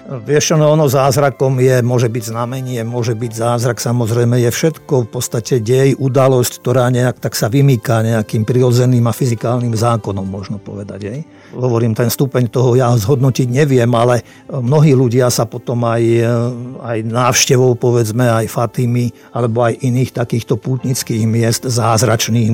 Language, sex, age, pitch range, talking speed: Slovak, male, 50-69, 115-130 Hz, 145 wpm